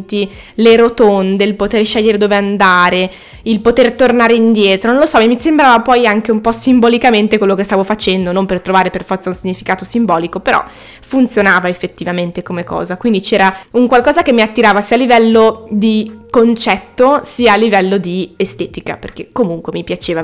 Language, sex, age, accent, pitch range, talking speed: Italian, female, 20-39, native, 185-225 Hz, 175 wpm